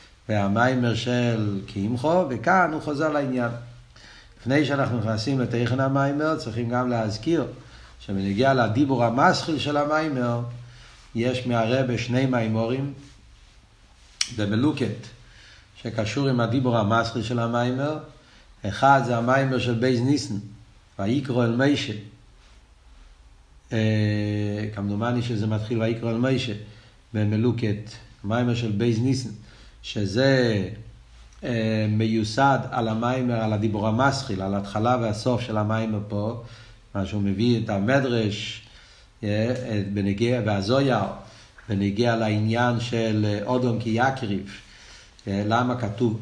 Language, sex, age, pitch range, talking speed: Hebrew, male, 60-79, 105-125 Hz, 105 wpm